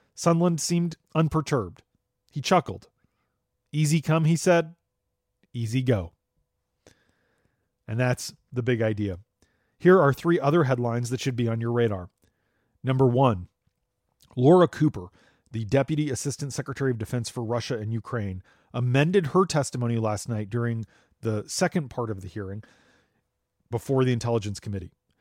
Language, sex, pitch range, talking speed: English, male, 115-155 Hz, 135 wpm